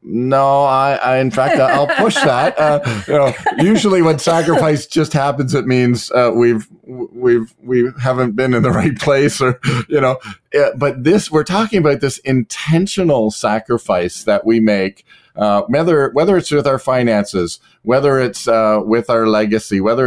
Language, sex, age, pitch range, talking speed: English, male, 40-59, 100-130 Hz, 170 wpm